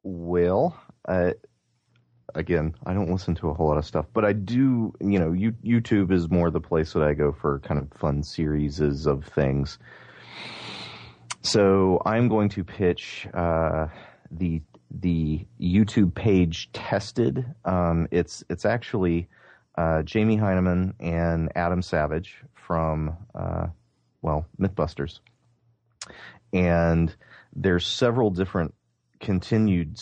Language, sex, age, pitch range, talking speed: English, male, 30-49, 80-95 Hz, 125 wpm